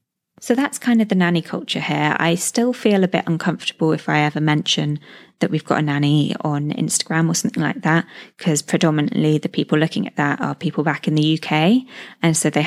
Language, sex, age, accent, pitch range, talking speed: English, female, 20-39, British, 150-180 Hz, 215 wpm